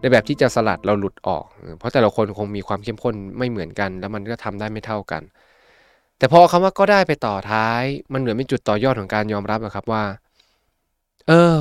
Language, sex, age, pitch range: Thai, male, 20-39, 105-135 Hz